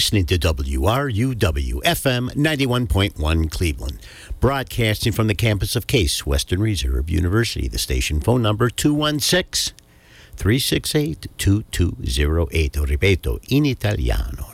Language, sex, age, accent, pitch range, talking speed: English, male, 60-79, American, 75-105 Hz, 90 wpm